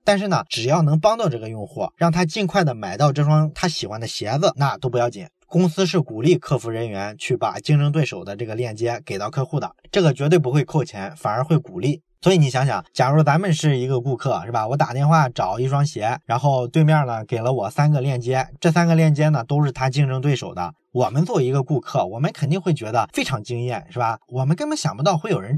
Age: 20-39